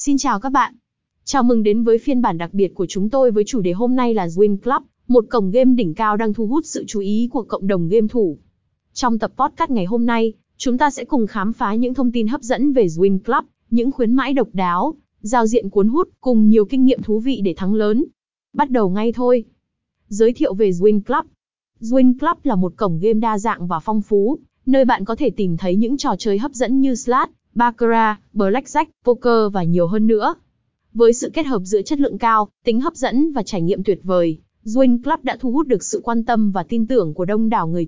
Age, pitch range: 20-39, 205-260 Hz